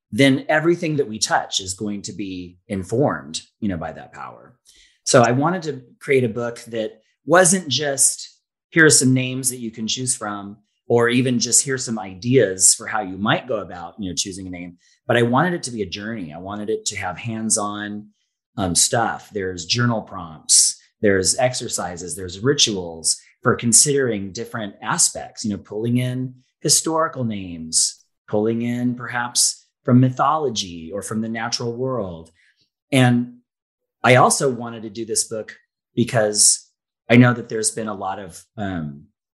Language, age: English, 30-49